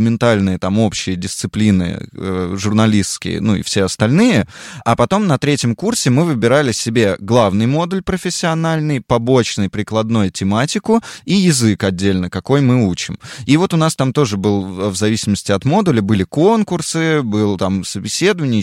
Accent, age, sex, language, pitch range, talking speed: native, 20-39, male, Russian, 105-150 Hz, 150 wpm